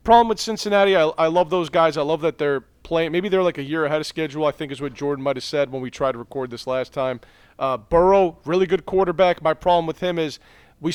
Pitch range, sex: 145-180 Hz, male